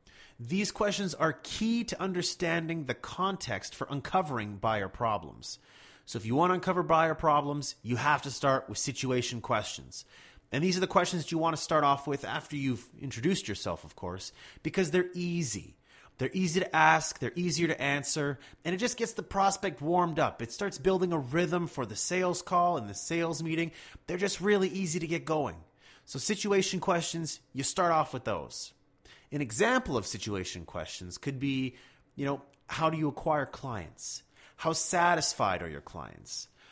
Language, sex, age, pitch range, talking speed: English, male, 30-49, 130-180 Hz, 180 wpm